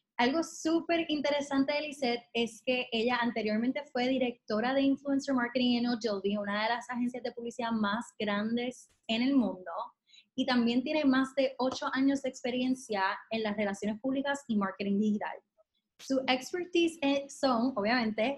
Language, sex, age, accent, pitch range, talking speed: Spanish, female, 20-39, American, 225-280 Hz, 155 wpm